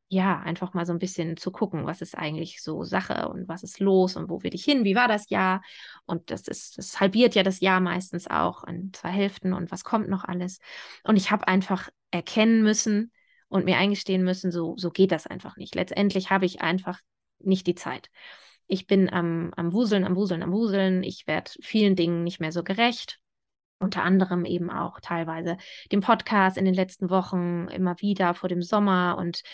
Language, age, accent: German, 20-39, German